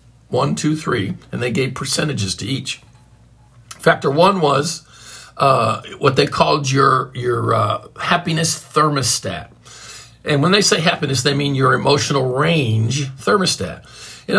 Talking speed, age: 140 wpm, 50-69